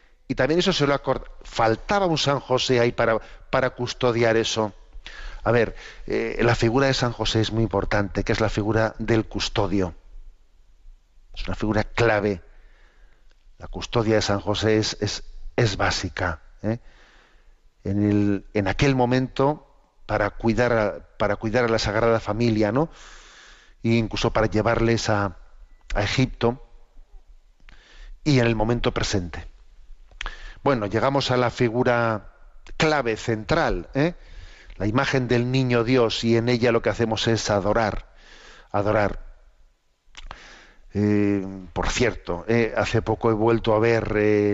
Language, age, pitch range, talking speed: Spanish, 50-69, 105-120 Hz, 145 wpm